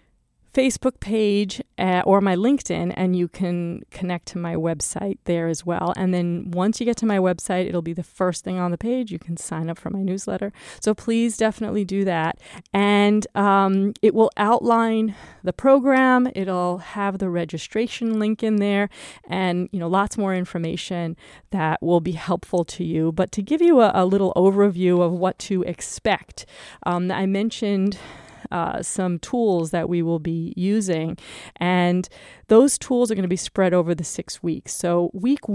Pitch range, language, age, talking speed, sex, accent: 175-210 Hz, English, 30-49, 180 wpm, female, American